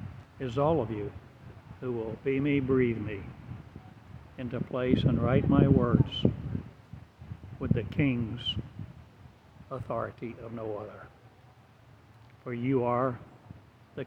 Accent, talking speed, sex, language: American, 115 wpm, male, English